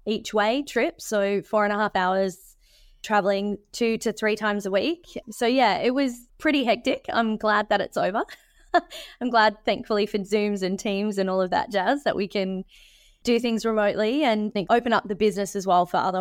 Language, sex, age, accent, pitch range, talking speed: English, female, 20-39, Australian, 190-225 Hz, 200 wpm